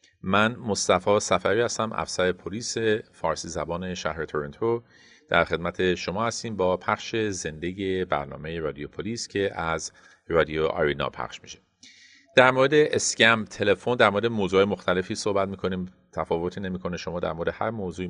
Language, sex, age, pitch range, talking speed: Persian, male, 40-59, 90-105 Hz, 145 wpm